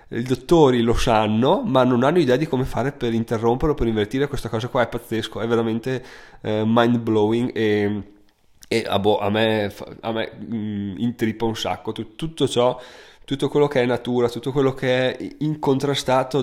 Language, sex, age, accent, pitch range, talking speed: Italian, male, 20-39, native, 110-130 Hz, 175 wpm